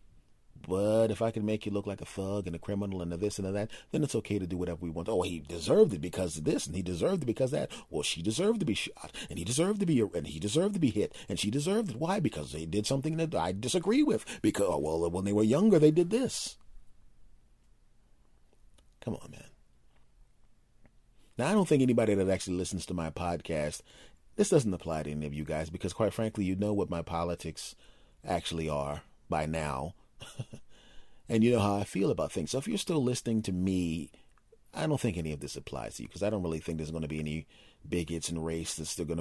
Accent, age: American, 30-49